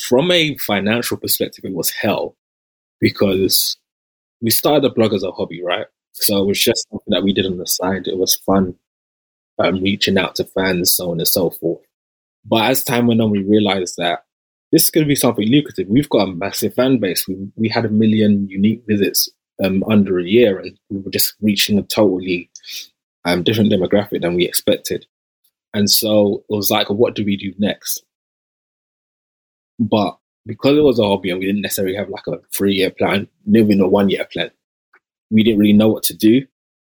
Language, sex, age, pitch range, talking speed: English, male, 20-39, 95-110 Hz, 195 wpm